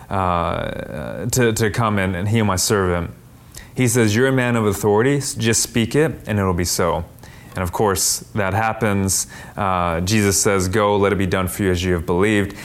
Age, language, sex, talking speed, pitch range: 30-49, English, male, 200 wpm, 110-150 Hz